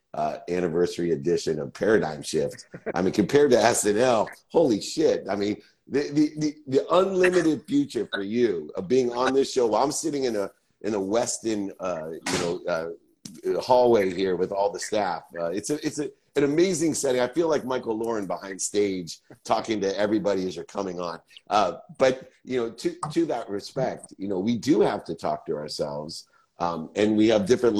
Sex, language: male, English